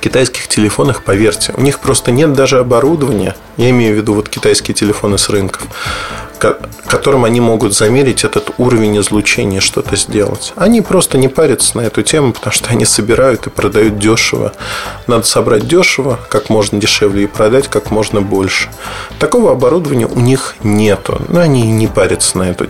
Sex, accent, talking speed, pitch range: male, native, 165 wpm, 105-160 Hz